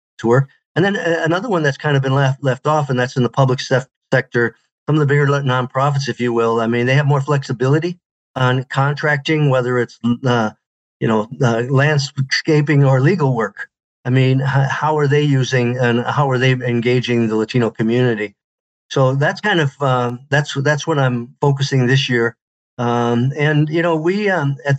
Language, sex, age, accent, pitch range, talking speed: English, male, 50-69, American, 120-140 Hz, 185 wpm